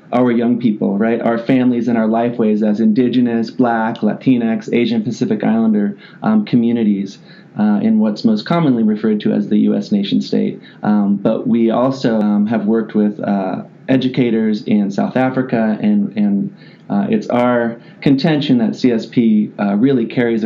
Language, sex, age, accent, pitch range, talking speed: English, male, 30-49, American, 115-195 Hz, 160 wpm